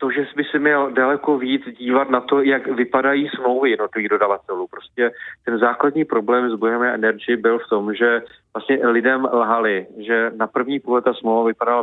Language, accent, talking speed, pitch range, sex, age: Czech, native, 185 wpm, 115-130 Hz, male, 30-49